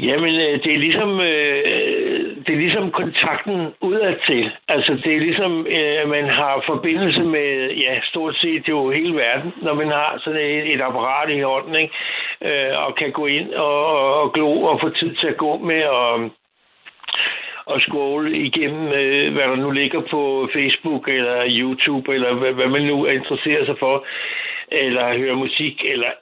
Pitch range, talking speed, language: 140-165 Hz, 165 wpm, Danish